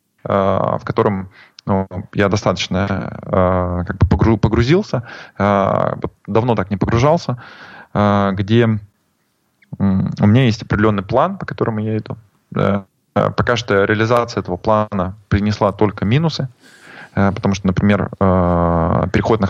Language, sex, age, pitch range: Russian, male, 20-39, 95-110 Hz